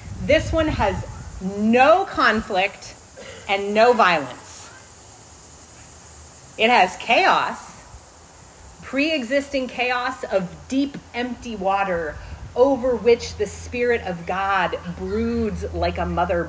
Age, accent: 30-49, American